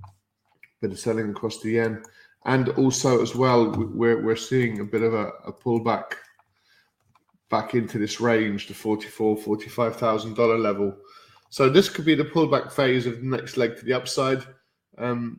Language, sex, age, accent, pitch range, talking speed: English, male, 20-39, British, 110-135 Hz, 170 wpm